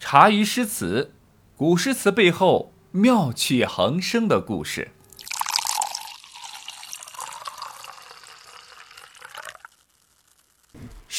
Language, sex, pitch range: Chinese, male, 165-235 Hz